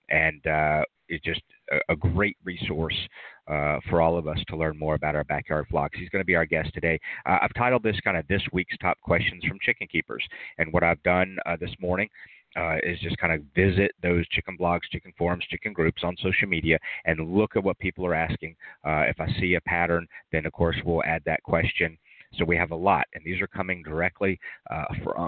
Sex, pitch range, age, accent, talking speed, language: male, 80-95 Hz, 40-59, American, 225 wpm, English